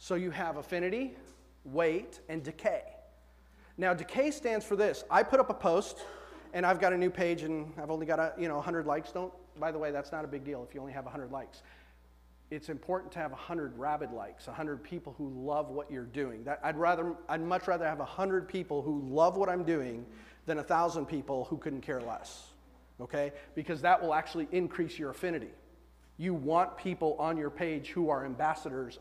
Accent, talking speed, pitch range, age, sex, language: American, 205 wpm, 140-180 Hz, 40-59, male, English